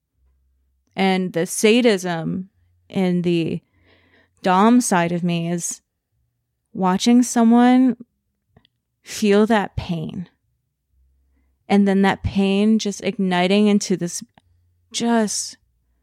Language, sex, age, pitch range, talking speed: English, female, 30-49, 155-220 Hz, 90 wpm